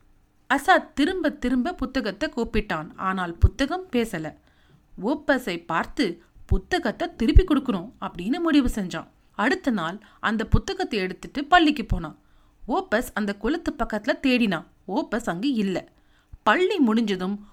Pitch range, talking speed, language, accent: 205-310 Hz, 115 wpm, English, Indian